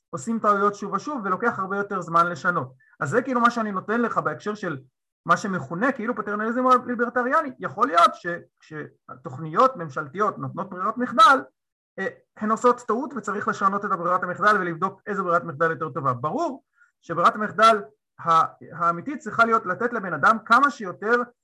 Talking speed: 155 wpm